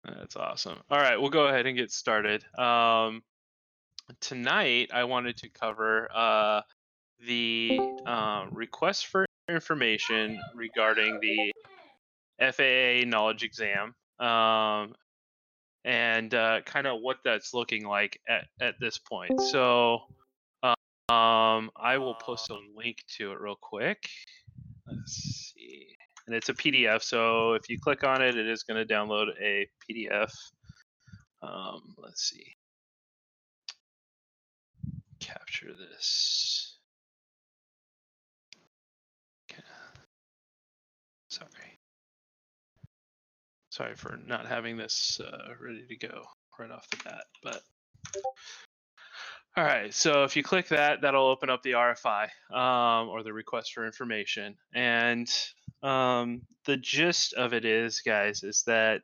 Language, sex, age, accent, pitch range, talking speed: English, male, 20-39, American, 110-130 Hz, 120 wpm